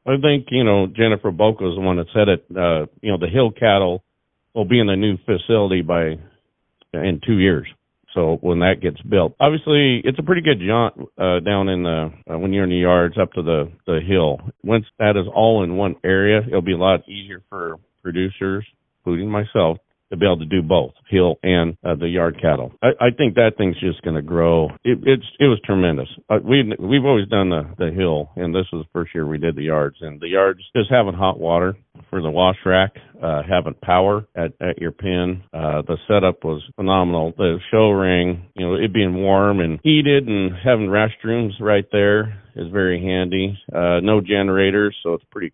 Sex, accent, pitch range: male, American, 85-105 Hz